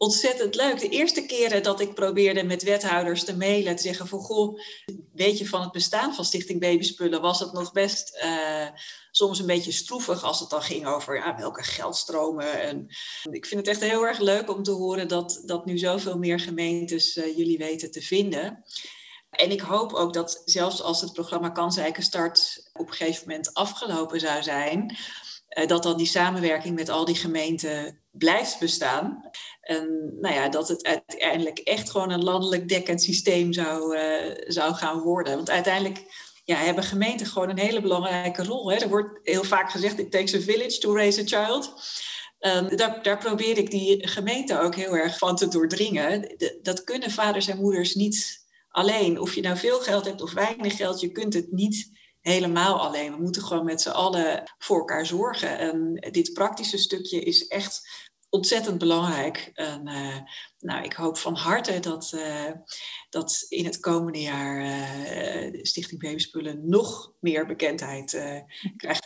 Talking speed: 175 wpm